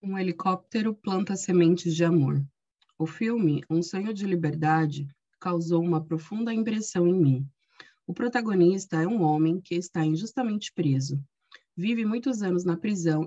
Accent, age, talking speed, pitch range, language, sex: Brazilian, 20-39, 145 wpm, 155-195 Hz, Portuguese, female